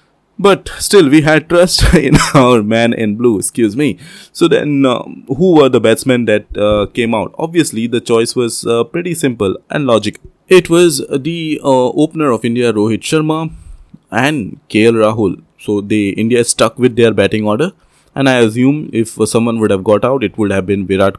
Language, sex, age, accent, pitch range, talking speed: English, male, 20-39, Indian, 105-140 Hz, 185 wpm